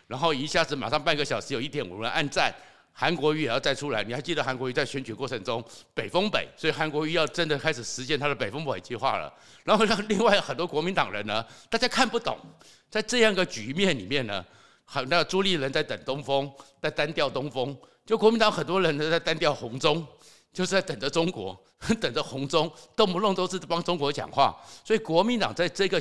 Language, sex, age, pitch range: Chinese, male, 50-69, 135-185 Hz